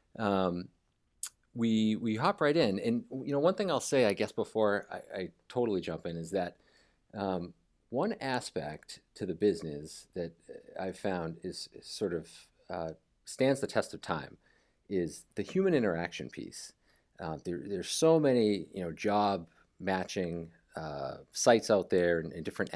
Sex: male